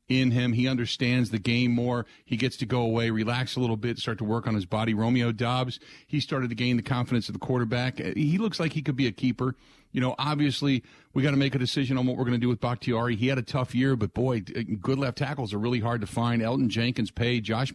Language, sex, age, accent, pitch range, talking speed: English, male, 50-69, American, 120-150 Hz, 255 wpm